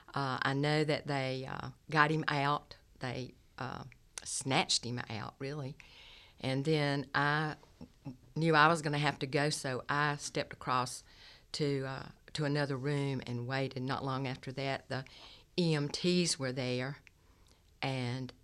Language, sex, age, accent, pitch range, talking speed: English, female, 60-79, American, 125-155 Hz, 150 wpm